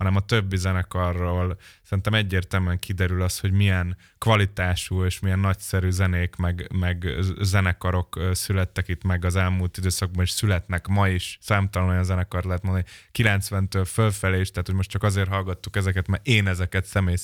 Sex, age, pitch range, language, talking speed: male, 20-39, 90-105 Hz, Hungarian, 160 wpm